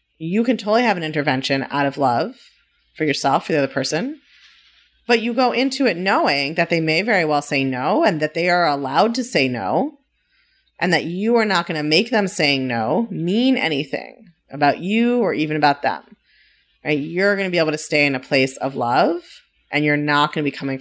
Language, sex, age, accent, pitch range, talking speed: English, female, 30-49, American, 145-210 Hz, 215 wpm